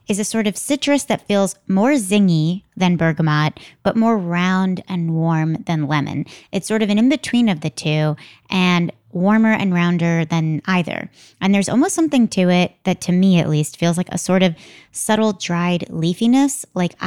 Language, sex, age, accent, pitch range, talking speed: English, female, 20-39, American, 165-215 Hz, 185 wpm